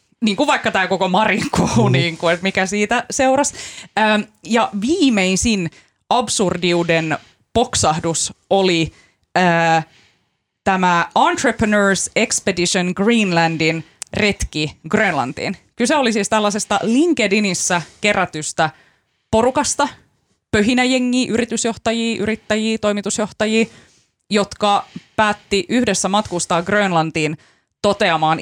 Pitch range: 165-215 Hz